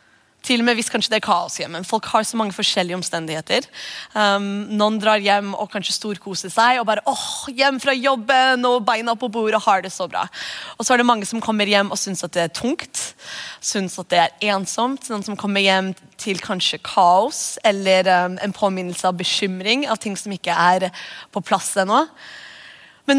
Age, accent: 20-39, Swedish